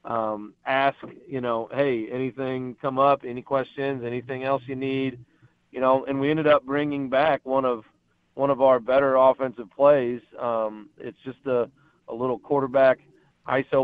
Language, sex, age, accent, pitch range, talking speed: English, male, 40-59, American, 120-135 Hz, 165 wpm